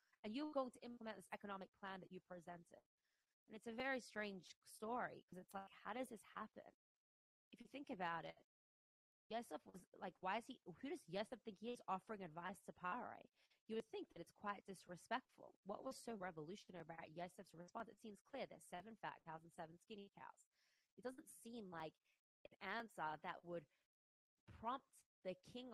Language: English